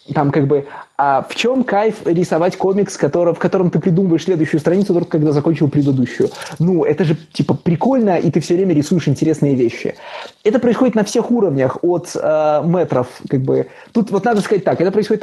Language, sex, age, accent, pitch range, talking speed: Russian, male, 20-39, native, 165-210 Hz, 190 wpm